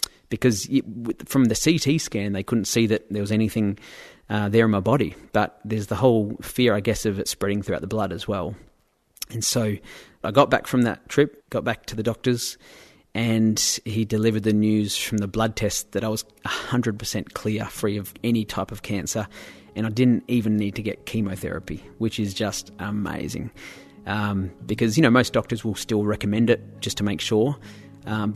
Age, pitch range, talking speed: 30-49, 100-120 Hz, 195 wpm